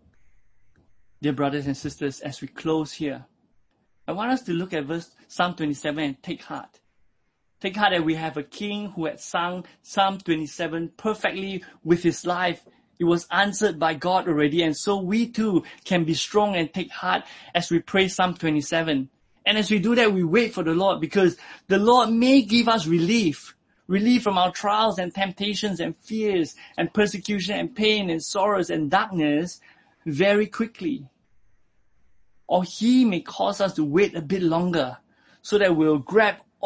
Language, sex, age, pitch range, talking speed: English, male, 20-39, 155-205 Hz, 175 wpm